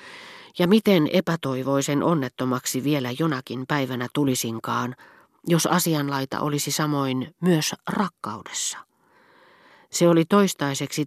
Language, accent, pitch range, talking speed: Finnish, native, 125-160 Hz, 90 wpm